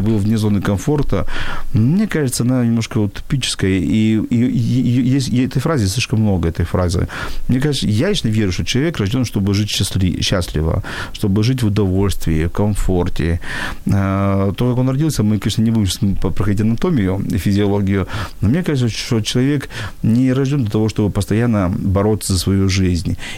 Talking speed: 170 wpm